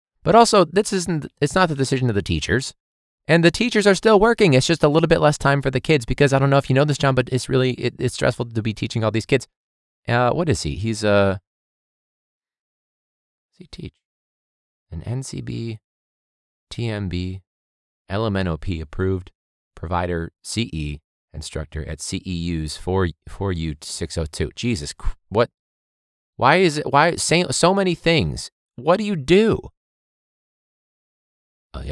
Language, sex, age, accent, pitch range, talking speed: English, male, 20-39, American, 80-130 Hz, 160 wpm